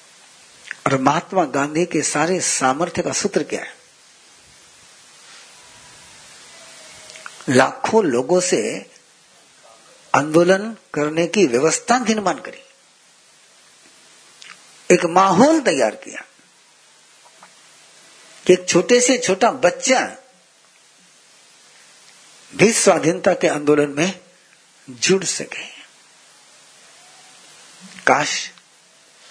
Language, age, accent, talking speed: Hindi, 60-79, native, 70 wpm